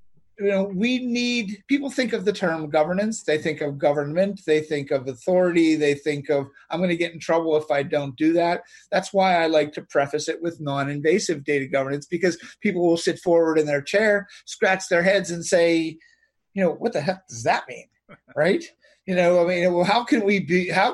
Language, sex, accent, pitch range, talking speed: English, male, American, 155-200 Hz, 215 wpm